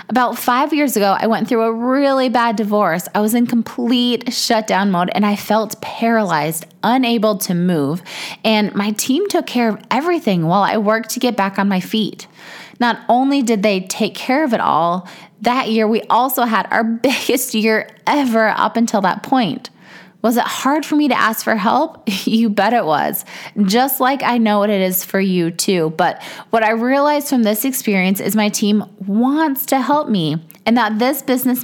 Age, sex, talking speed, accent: 20-39, female, 195 wpm, American